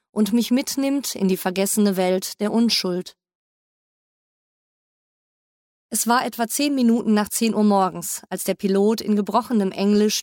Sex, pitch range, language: female, 185-225 Hz, German